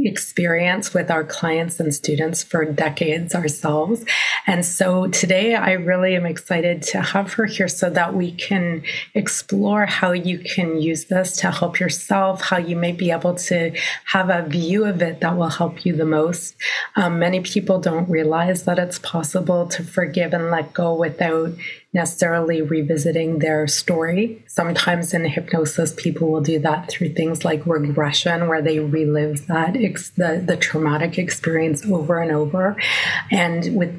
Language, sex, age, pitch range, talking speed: English, female, 30-49, 160-185 Hz, 165 wpm